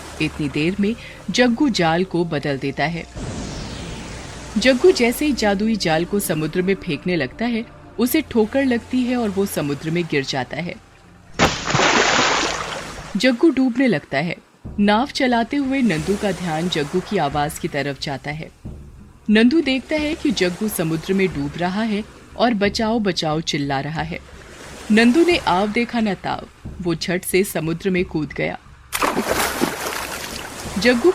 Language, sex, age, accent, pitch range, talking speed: Hindi, female, 30-49, native, 160-235 Hz, 120 wpm